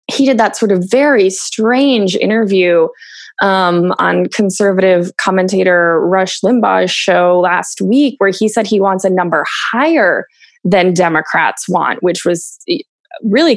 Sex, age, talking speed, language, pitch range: female, 20-39, 135 wpm, English, 175-225 Hz